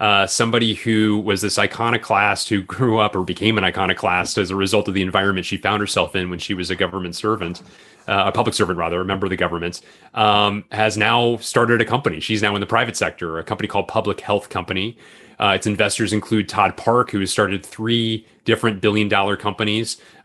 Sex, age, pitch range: male, 30-49, 100-115 Hz